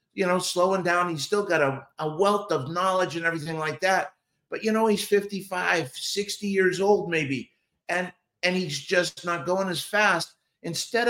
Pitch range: 160-200 Hz